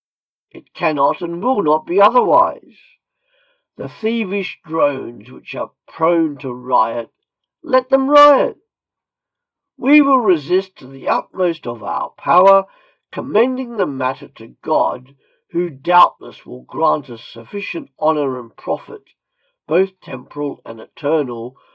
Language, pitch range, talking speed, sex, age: English, 140-225 Hz, 125 wpm, male, 50-69